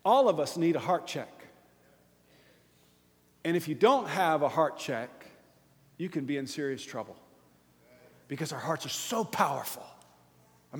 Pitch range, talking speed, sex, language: 145-190 Hz, 155 wpm, male, English